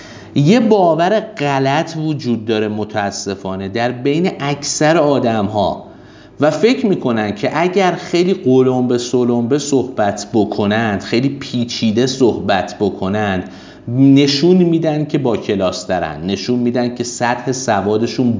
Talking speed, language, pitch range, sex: 115 wpm, Persian, 105-140 Hz, male